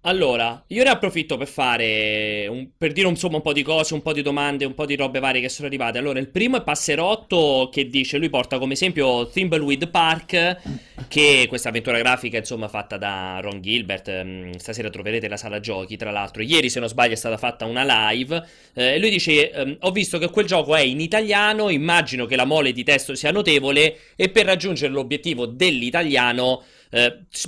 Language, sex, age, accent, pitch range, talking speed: Italian, male, 30-49, native, 120-165 Hz, 190 wpm